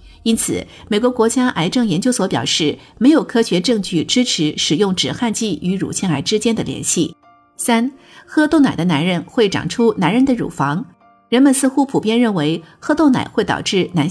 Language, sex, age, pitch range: Chinese, female, 50-69, 170-250 Hz